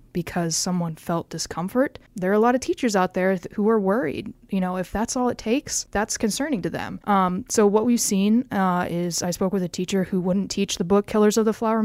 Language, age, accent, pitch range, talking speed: English, 20-39, American, 180-225 Hz, 245 wpm